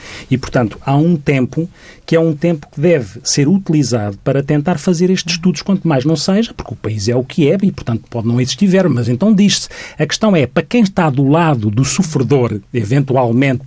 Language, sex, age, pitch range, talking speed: Portuguese, male, 40-59, 120-160 Hz, 210 wpm